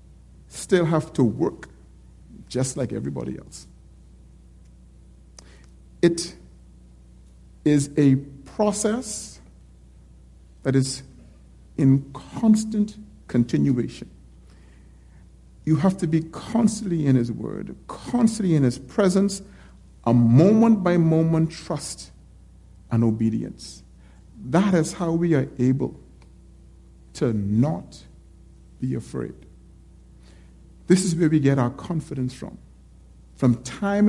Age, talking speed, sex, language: 50-69, 100 wpm, male, English